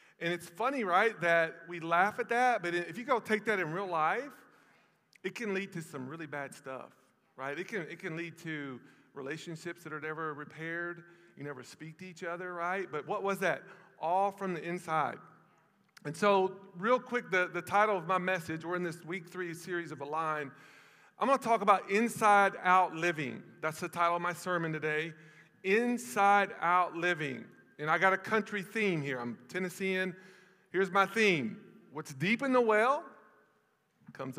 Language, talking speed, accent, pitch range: English, 185 wpm, American, 165-205 Hz